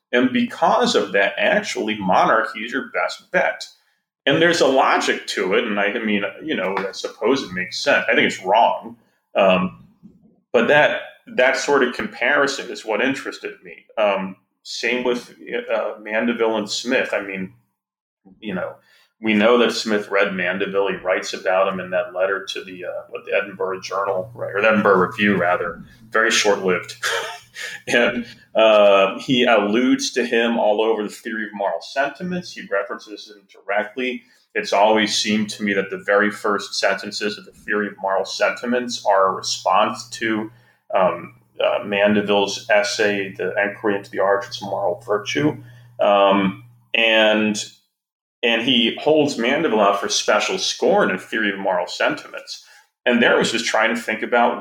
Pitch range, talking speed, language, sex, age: 100-120 Hz, 170 wpm, English, male, 30-49